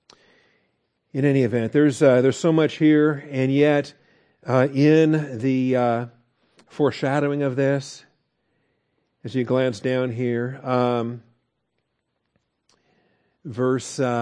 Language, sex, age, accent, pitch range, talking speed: English, male, 50-69, American, 125-150 Hz, 105 wpm